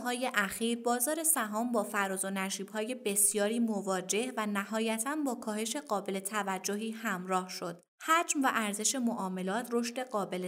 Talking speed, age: 145 wpm, 20-39